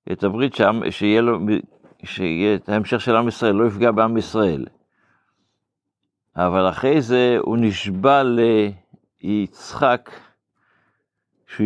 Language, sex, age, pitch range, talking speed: Hebrew, male, 60-79, 95-115 Hz, 115 wpm